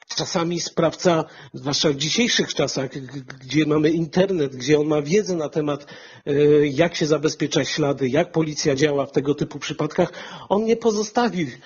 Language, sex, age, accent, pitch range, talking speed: Polish, male, 40-59, native, 150-185 Hz, 150 wpm